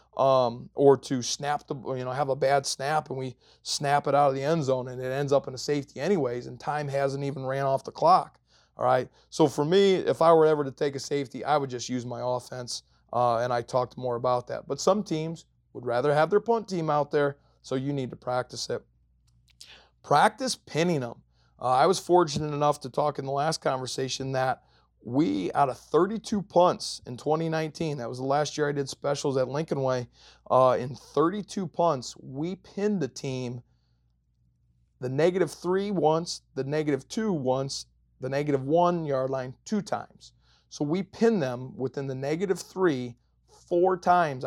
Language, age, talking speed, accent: English, 30-49, 195 wpm, American